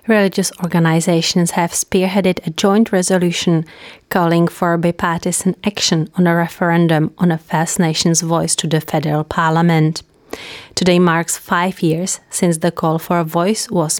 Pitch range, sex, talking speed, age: 160-185 Hz, female, 145 wpm, 30-49